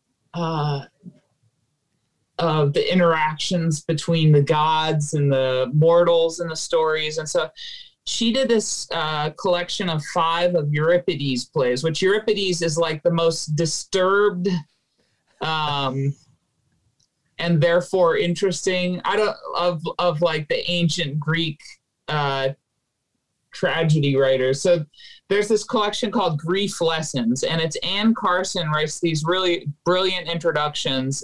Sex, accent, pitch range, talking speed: male, American, 150-180 Hz, 120 wpm